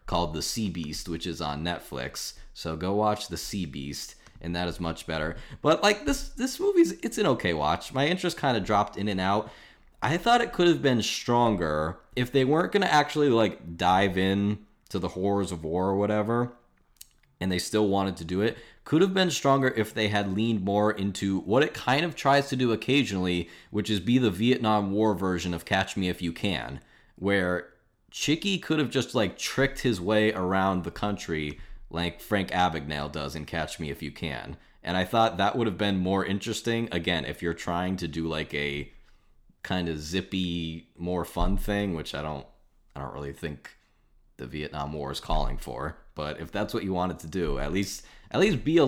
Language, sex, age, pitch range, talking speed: English, male, 20-39, 85-115 Hz, 205 wpm